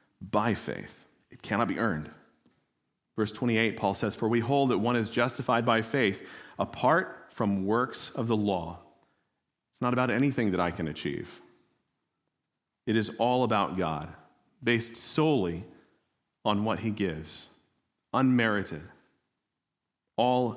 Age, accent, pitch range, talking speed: 40-59, American, 110-145 Hz, 135 wpm